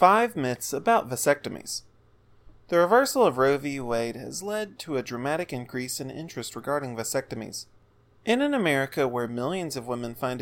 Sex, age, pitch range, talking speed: male, 30-49, 120-160 Hz, 160 wpm